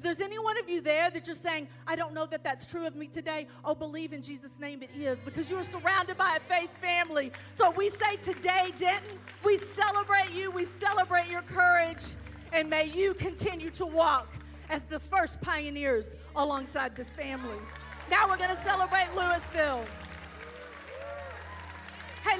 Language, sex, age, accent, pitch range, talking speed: English, female, 40-59, American, 295-375 Hz, 175 wpm